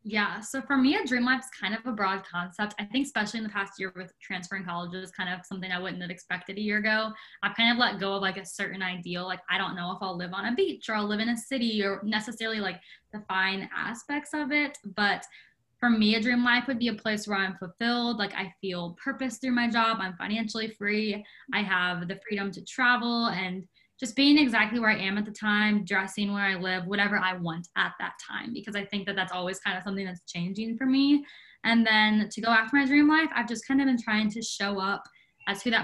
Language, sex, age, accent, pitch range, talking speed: English, female, 10-29, American, 190-230 Hz, 250 wpm